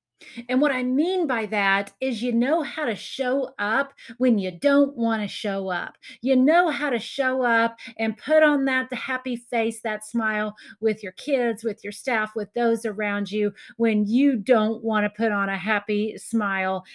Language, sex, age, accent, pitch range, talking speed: English, female, 40-59, American, 210-260 Hz, 190 wpm